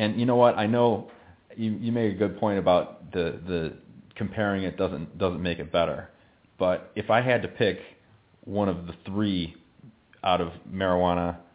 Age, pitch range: 30-49, 85-110 Hz